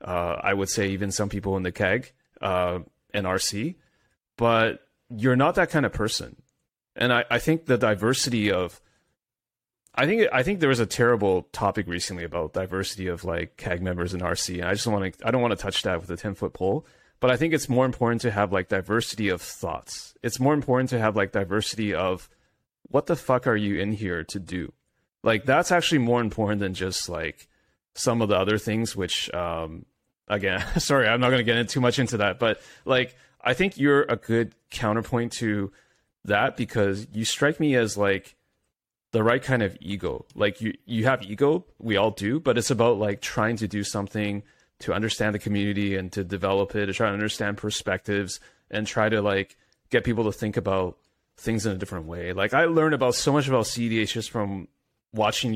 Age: 30-49